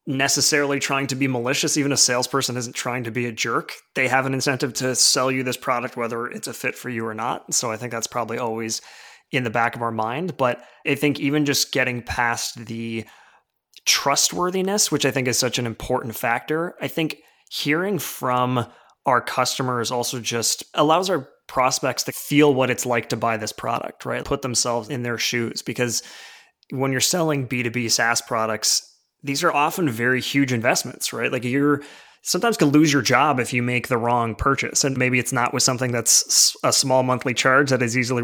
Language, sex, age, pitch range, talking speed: English, male, 20-39, 120-135 Hz, 200 wpm